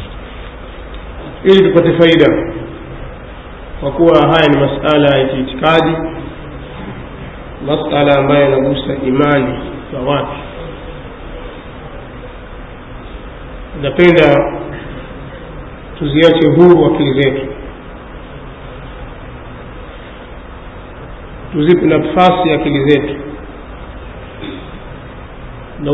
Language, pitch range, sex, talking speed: Swahili, 100-155 Hz, male, 60 wpm